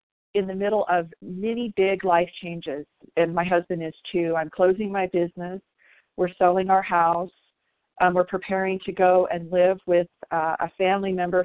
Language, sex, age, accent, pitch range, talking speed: English, female, 40-59, American, 170-195 Hz, 175 wpm